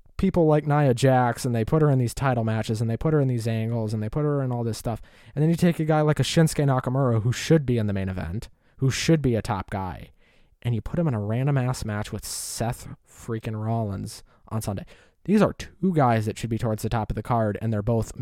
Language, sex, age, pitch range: English, male, 20-39, 110-160 Hz